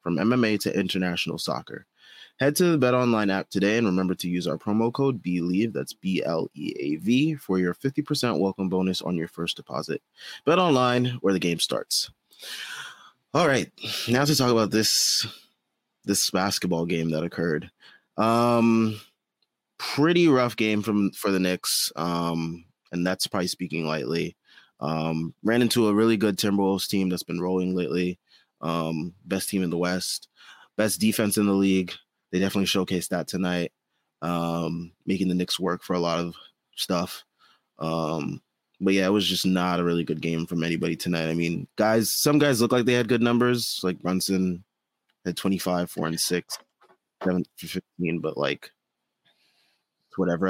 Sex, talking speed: male, 170 wpm